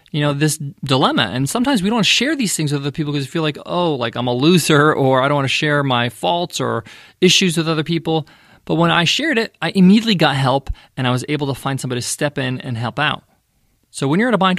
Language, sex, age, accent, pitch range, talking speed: English, male, 20-39, American, 145-205 Hz, 265 wpm